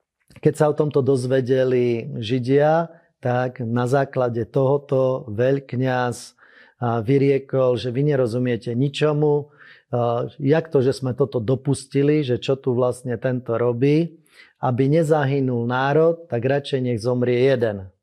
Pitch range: 120-140 Hz